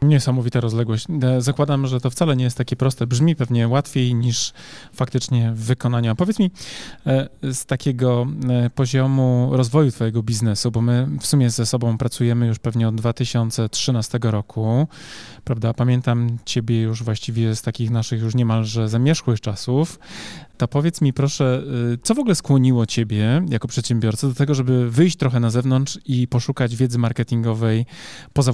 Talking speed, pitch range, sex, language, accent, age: 150 wpm, 115-135 Hz, male, Polish, native, 20-39